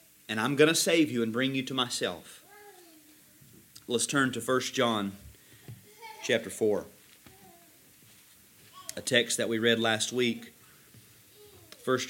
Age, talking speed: 30-49, 130 wpm